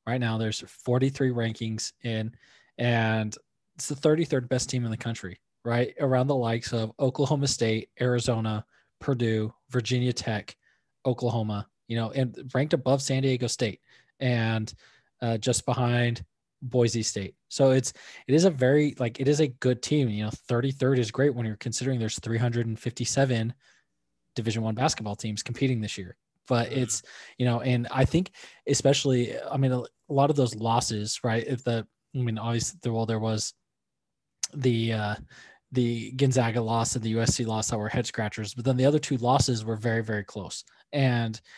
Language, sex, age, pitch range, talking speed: English, male, 20-39, 110-130 Hz, 170 wpm